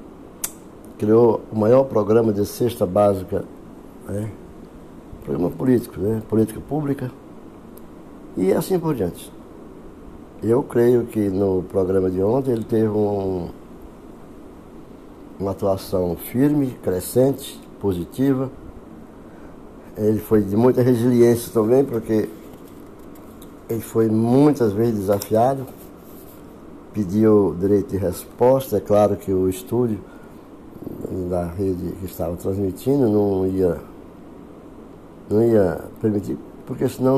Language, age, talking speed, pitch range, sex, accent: Portuguese, 60-79, 100 wpm, 95-120 Hz, male, Brazilian